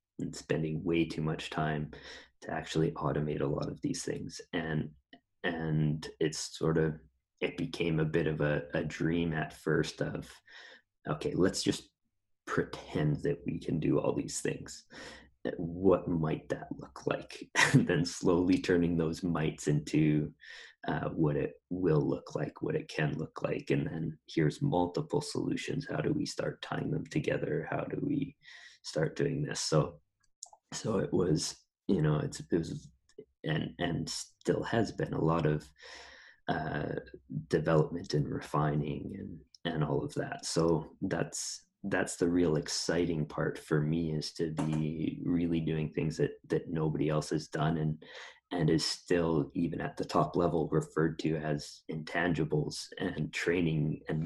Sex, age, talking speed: male, 30-49, 160 wpm